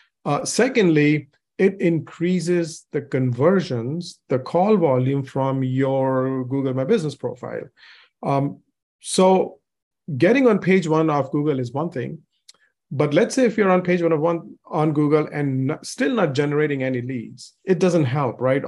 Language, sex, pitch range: English, male, 135-180 Hz